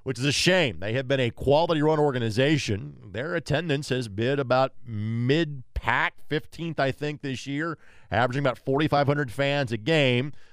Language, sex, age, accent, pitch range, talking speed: English, male, 40-59, American, 115-155 Hz, 155 wpm